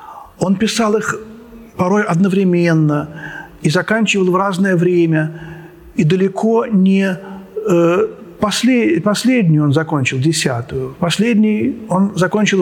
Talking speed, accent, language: 100 wpm, native, Russian